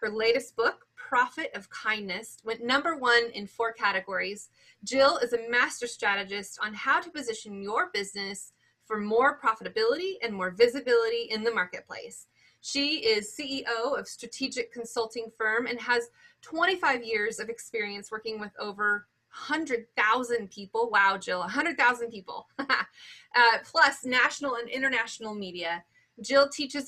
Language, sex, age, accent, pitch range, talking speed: English, female, 30-49, American, 220-290 Hz, 145 wpm